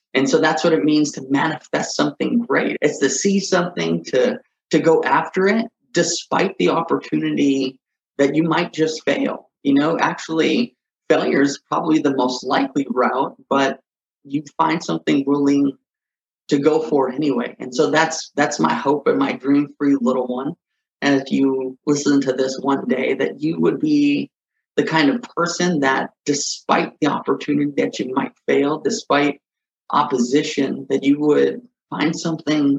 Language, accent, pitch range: English, American, 140-175 Hz